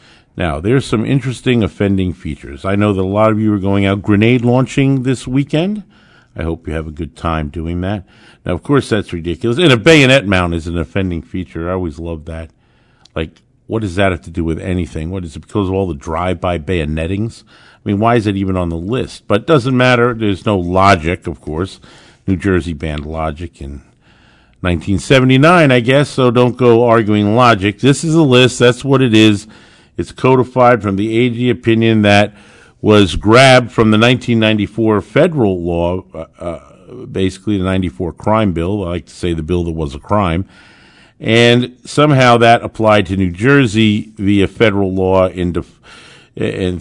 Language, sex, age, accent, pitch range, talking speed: English, male, 50-69, American, 90-115 Hz, 185 wpm